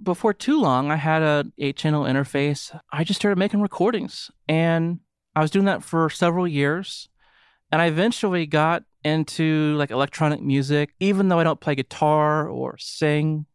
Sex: male